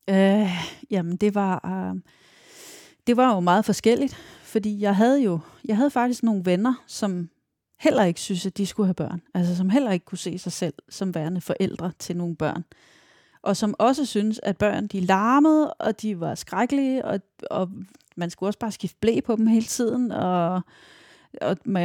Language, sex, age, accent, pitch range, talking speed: Danish, female, 30-49, native, 180-220 Hz, 190 wpm